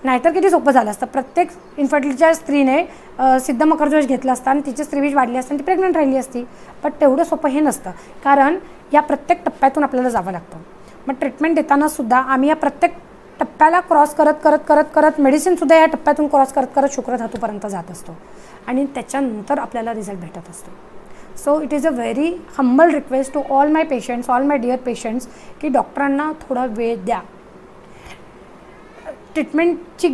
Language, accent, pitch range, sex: Marathi, native, 255-315 Hz, female